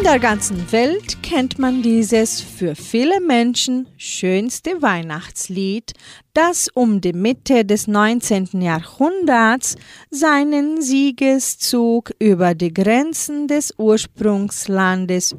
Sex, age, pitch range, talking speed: female, 40-59, 185-260 Hz, 100 wpm